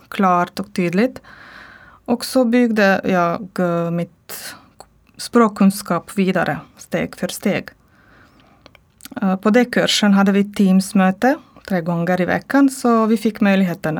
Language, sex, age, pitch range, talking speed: Swedish, female, 20-39, 180-225 Hz, 120 wpm